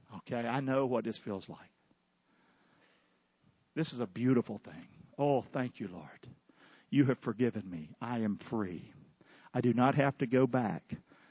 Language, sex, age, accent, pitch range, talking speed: English, male, 50-69, American, 125-200 Hz, 160 wpm